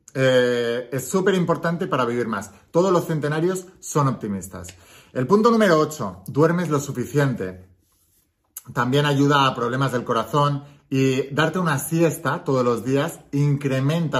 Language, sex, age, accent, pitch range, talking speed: Spanish, male, 30-49, Spanish, 120-160 Hz, 140 wpm